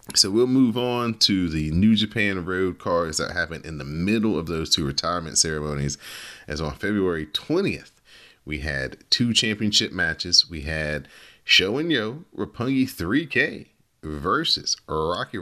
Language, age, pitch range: English, 30-49, 80-115 Hz